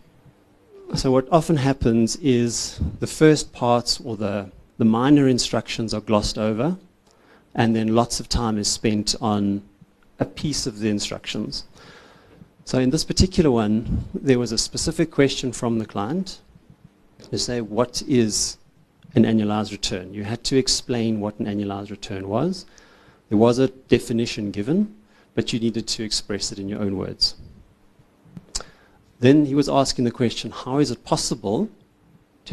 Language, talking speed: English, 155 wpm